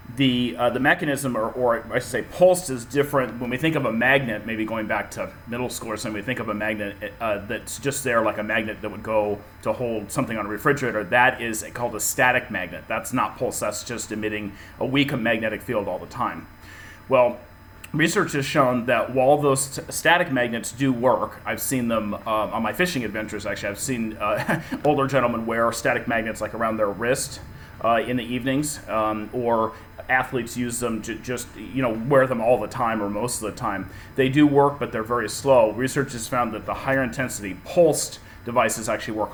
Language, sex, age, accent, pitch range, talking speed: English, male, 30-49, American, 105-130 Hz, 215 wpm